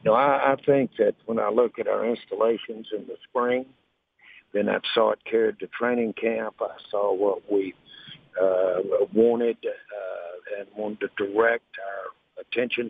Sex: male